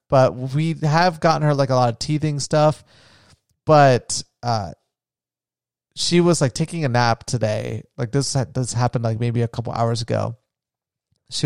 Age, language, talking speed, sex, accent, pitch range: 30-49, English, 160 wpm, male, American, 115-145 Hz